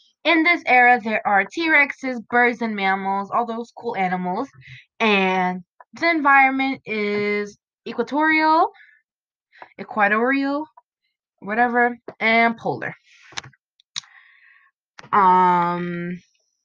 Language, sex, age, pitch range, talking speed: English, female, 20-39, 180-255 Hz, 85 wpm